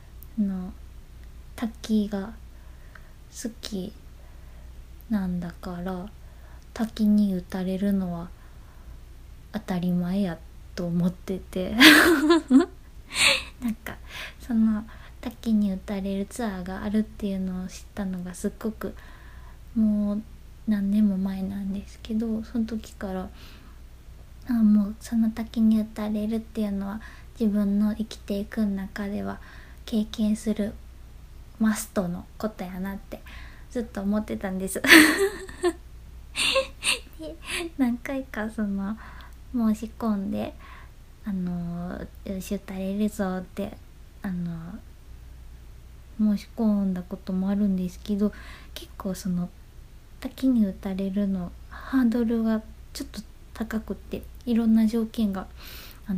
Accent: native